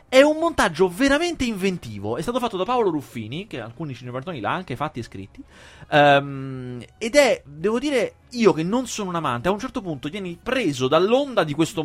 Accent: native